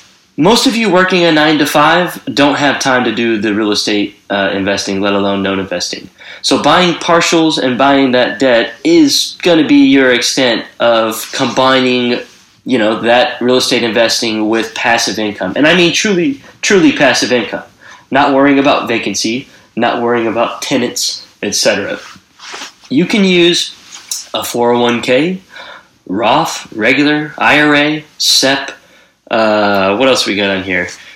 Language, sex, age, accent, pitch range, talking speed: English, male, 20-39, American, 115-160 Hz, 150 wpm